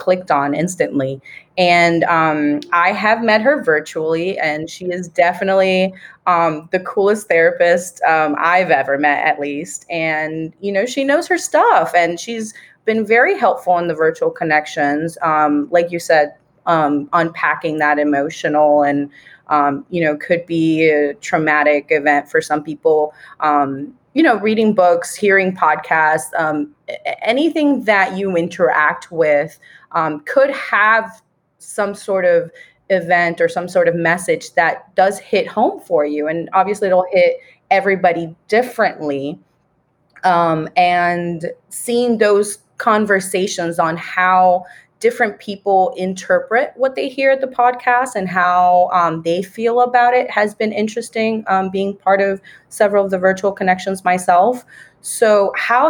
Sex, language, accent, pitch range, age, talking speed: female, English, American, 160-210 Hz, 20-39, 145 wpm